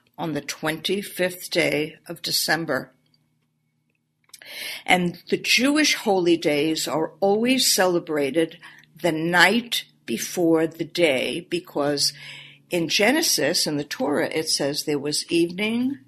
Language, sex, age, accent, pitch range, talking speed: English, female, 60-79, American, 155-195 Hz, 110 wpm